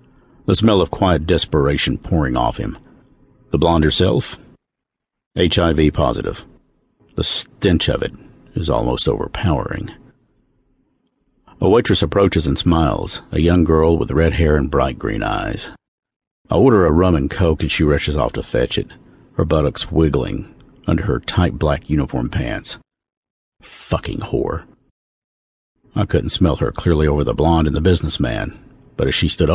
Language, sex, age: English, male, 50-69